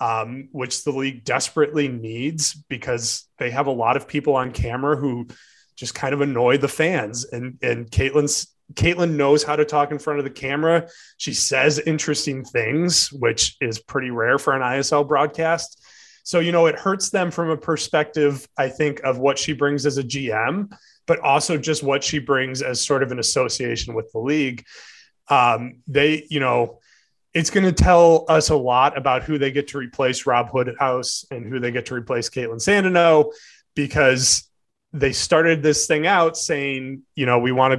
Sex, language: male, English